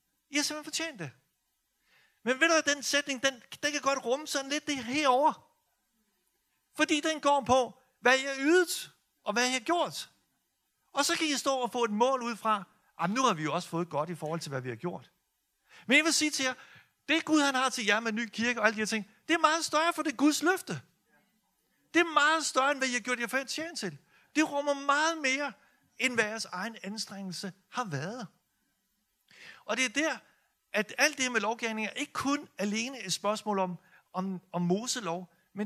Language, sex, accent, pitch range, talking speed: Danish, male, native, 170-275 Hz, 220 wpm